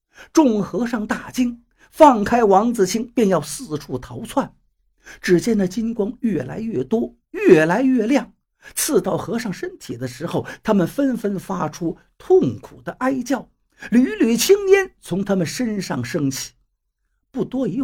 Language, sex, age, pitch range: Chinese, male, 50-69, 150-245 Hz